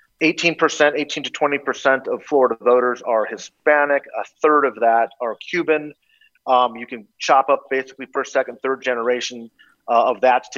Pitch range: 120-160 Hz